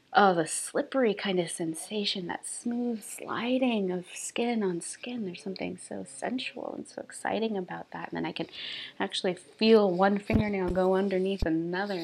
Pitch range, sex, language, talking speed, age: 165-195 Hz, female, English, 165 wpm, 30-49